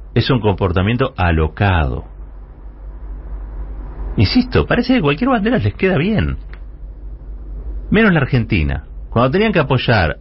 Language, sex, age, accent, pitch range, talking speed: Spanish, male, 40-59, Argentinian, 75-110 Hz, 110 wpm